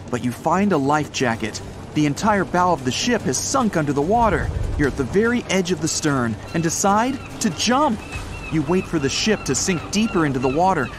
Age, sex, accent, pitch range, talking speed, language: 40-59, male, American, 130-205 Hz, 220 wpm, English